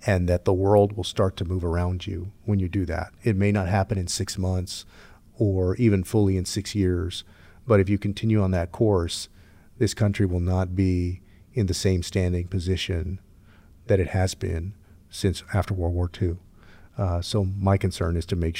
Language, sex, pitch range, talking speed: English, male, 90-100 Hz, 195 wpm